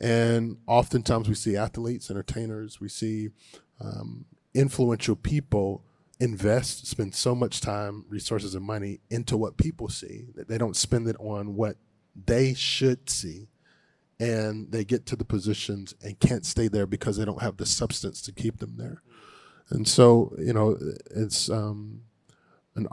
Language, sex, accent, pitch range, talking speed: English, male, American, 105-120 Hz, 155 wpm